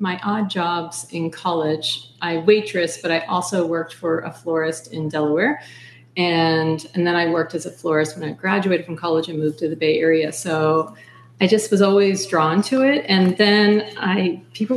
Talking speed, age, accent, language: 190 wpm, 40-59, American, English